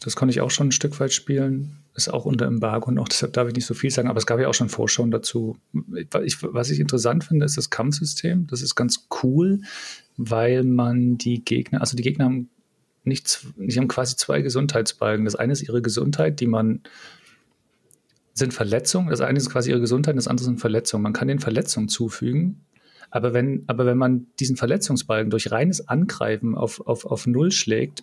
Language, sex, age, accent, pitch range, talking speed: German, male, 40-59, German, 120-145 Hz, 200 wpm